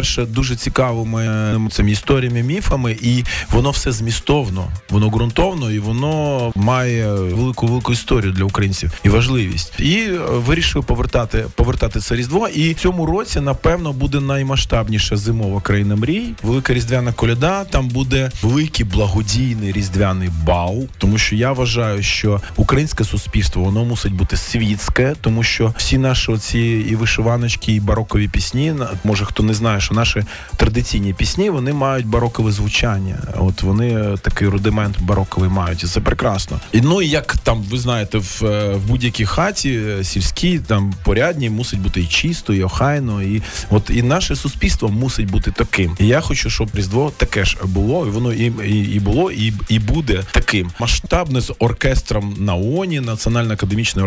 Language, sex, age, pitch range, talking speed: Ukrainian, male, 20-39, 100-130 Hz, 150 wpm